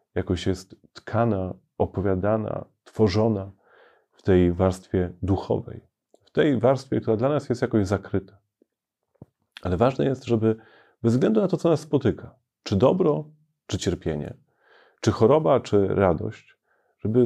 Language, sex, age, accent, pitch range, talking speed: Polish, male, 30-49, native, 95-125 Hz, 130 wpm